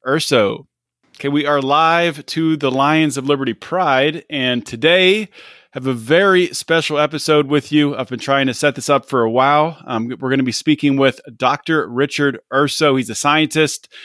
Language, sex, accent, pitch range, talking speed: English, male, American, 130-155 Hz, 185 wpm